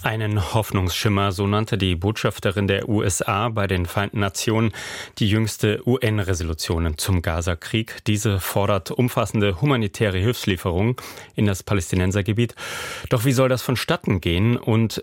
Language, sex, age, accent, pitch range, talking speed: German, male, 30-49, German, 85-110 Hz, 130 wpm